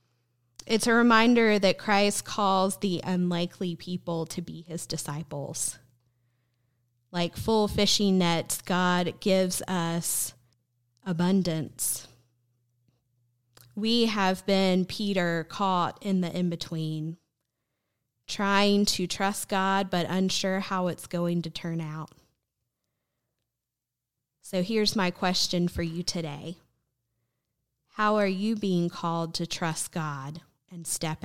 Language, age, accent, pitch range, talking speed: English, 20-39, American, 135-190 Hz, 115 wpm